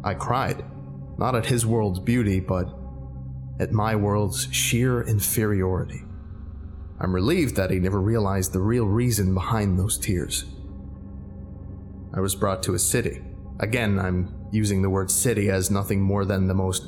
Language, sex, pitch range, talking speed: English, male, 95-120 Hz, 155 wpm